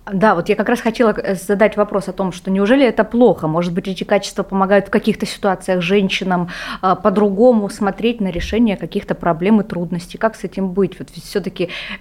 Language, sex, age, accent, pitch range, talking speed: Russian, female, 20-39, native, 180-225 Hz, 185 wpm